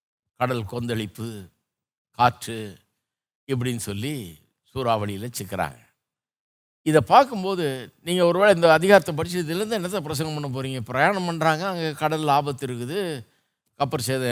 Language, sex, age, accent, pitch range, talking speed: Tamil, male, 50-69, native, 120-165 Hz, 115 wpm